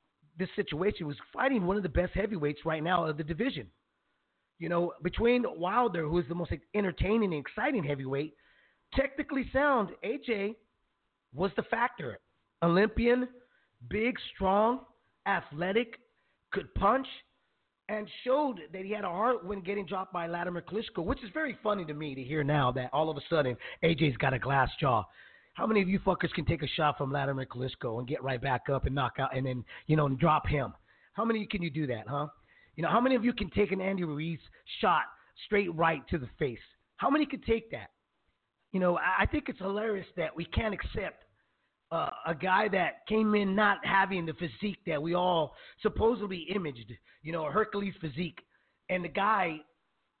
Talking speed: 190 wpm